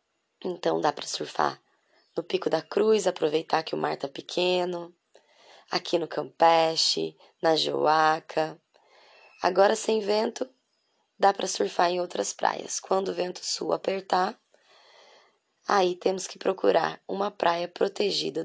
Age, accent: 20-39, Brazilian